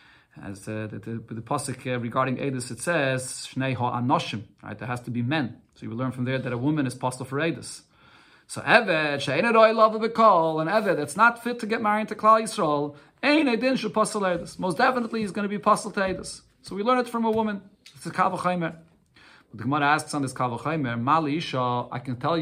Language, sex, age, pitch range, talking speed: English, male, 40-59, 135-185 Hz, 230 wpm